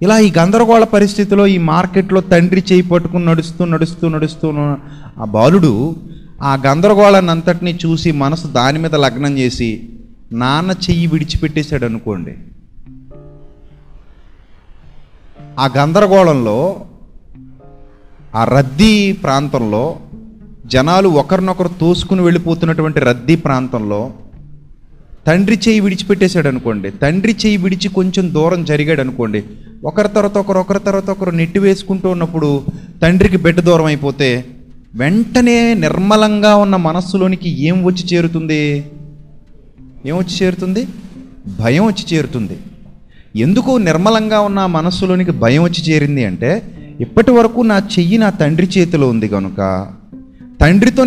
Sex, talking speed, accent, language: male, 110 wpm, native, Telugu